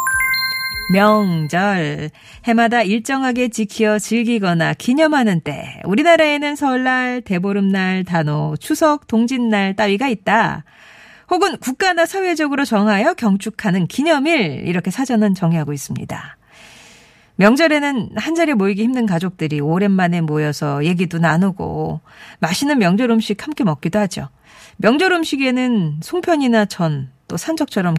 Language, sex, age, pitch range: Korean, female, 40-59, 180-275 Hz